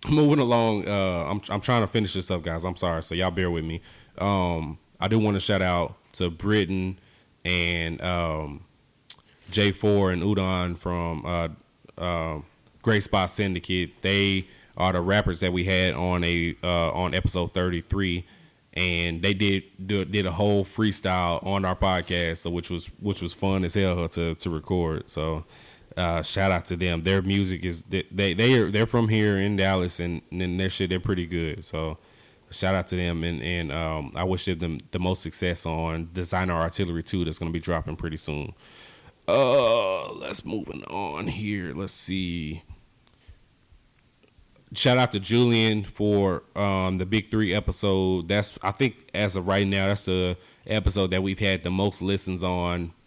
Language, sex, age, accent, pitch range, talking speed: English, male, 20-39, American, 85-100 Hz, 180 wpm